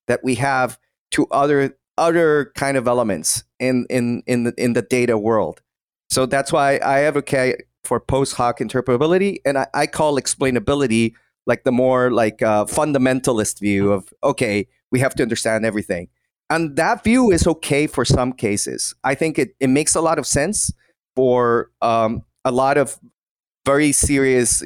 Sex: male